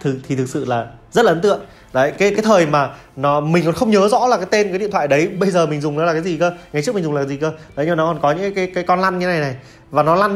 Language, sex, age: Vietnamese, male, 20-39